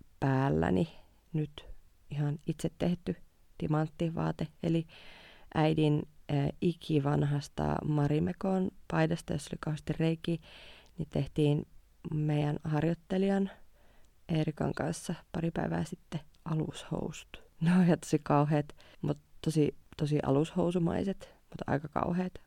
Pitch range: 140-170 Hz